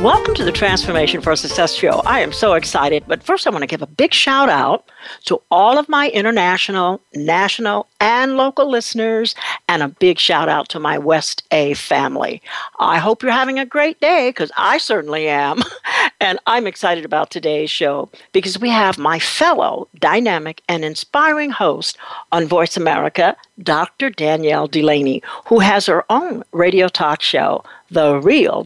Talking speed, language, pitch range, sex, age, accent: 170 wpm, English, 170-260 Hz, female, 60-79, American